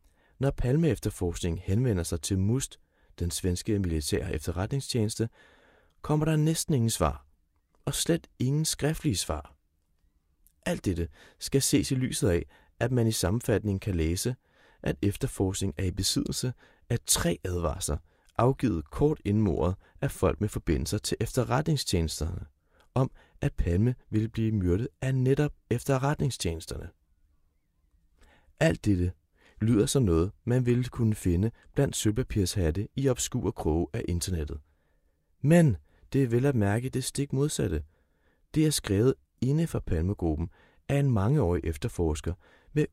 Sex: male